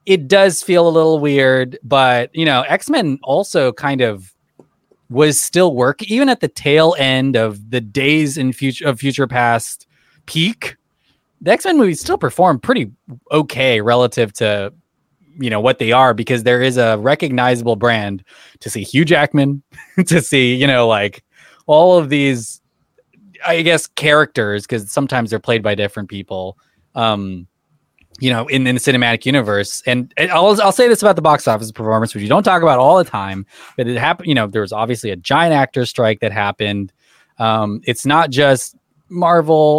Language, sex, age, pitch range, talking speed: English, male, 20-39, 115-150 Hz, 175 wpm